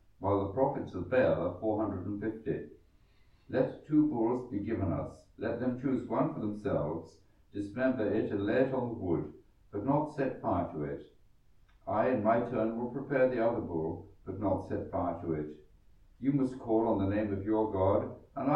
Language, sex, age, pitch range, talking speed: English, male, 60-79, 95-125 Hz, 195 wpm